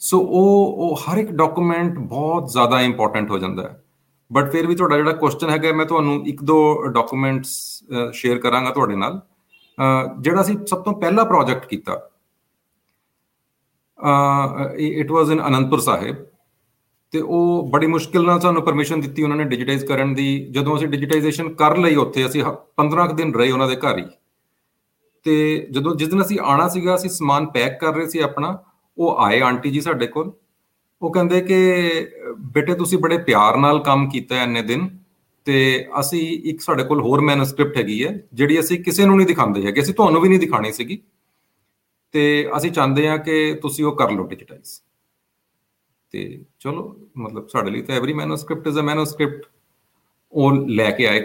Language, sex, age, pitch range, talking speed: Punjabi, male, 40-59, 135-170 Hz, 170 wpm